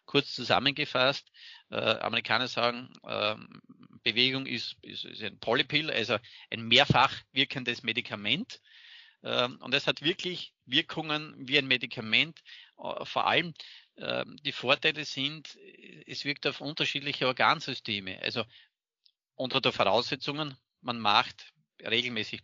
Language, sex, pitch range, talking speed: German, male, 115-135 Hz, 120 wpm